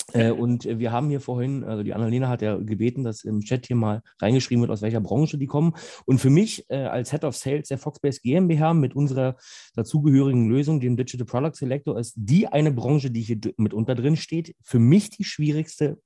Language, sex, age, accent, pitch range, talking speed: German, male, 30-49, German, 115-150 Hz, 215 wpm